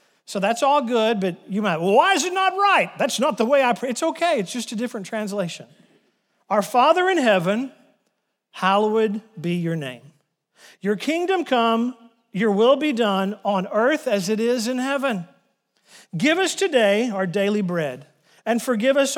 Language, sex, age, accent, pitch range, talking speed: English, male, 40-59, American, 185-250 Hz, 180 wpm